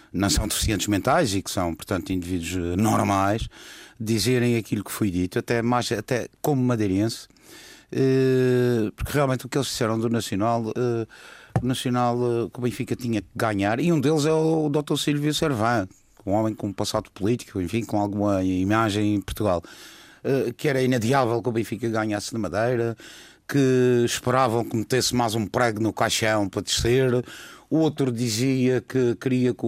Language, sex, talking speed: Portuguese, male, 165 wpm